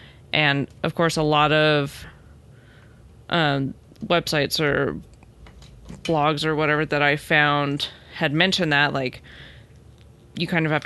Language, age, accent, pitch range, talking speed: English, 20-39, American, 145-170 Hz, 125 wpm